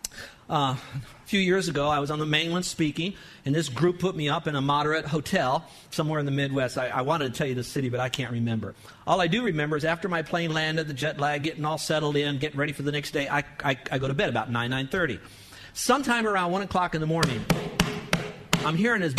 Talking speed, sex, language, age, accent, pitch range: 240 wpm, male, English, 50-69, American, 140-190 Hz